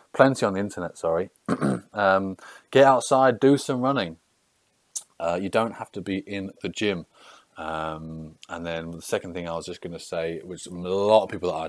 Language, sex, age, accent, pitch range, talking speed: English, male, 30-49, British, 85-115 Hz, 190 wpm